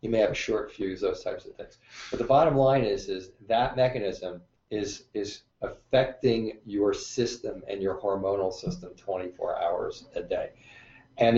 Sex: male